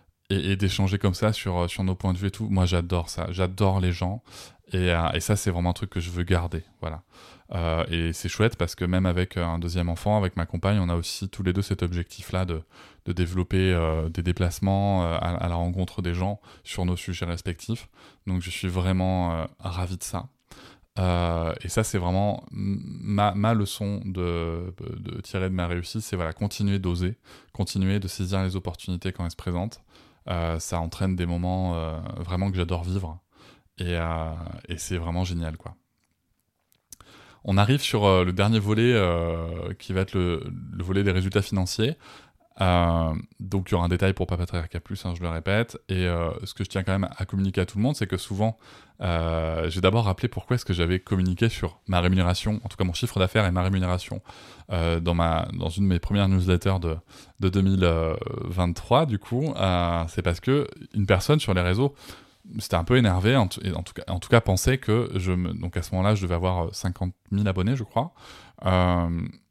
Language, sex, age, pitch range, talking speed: French, male, 20-39, 90-100 Hz, 210 wpm